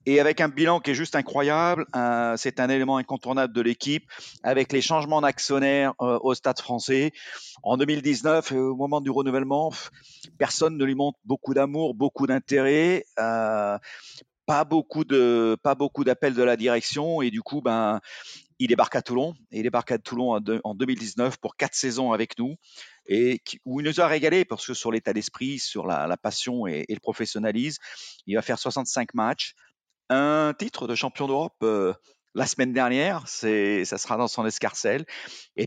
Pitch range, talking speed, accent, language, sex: 120-150 Hz, 185 wpm, French, French, male